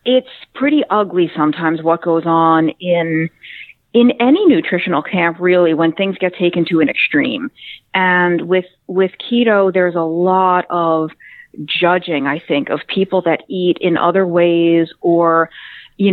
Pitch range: 170-215 Hz